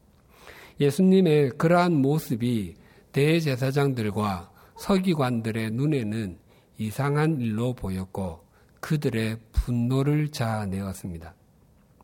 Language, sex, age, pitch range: Korean, male, 50-69, 110-150 Hz